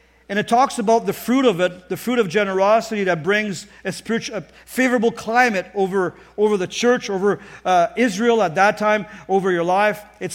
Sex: male